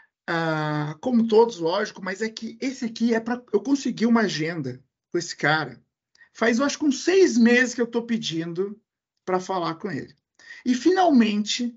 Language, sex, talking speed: Portuguese, male, 175 wpm